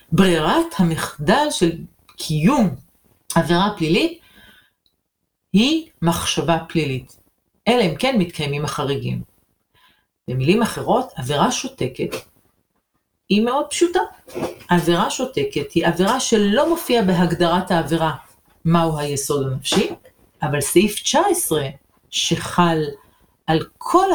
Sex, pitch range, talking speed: female, 150-205 Hz, 95 wpm